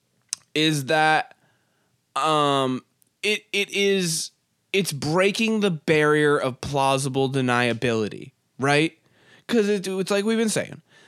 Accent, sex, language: American, male, English